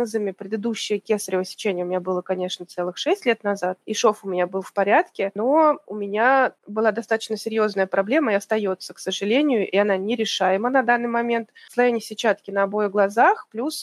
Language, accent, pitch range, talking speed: Russian, native, 195-245 Hz, 180 wpm